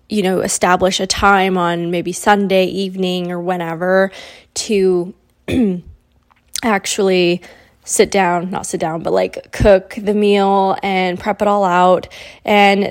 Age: 20-39